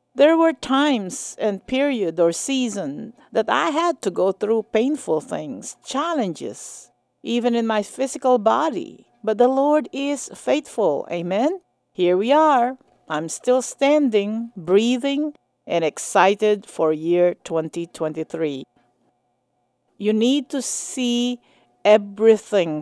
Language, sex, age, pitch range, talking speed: English, female, 50-69, 175-245 Hz, 115 wpm